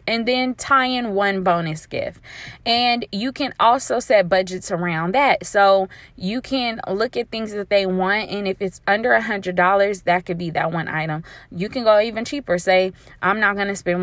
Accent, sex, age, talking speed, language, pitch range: American, female, 20-39, 200 wpm, English, 175-210 Hz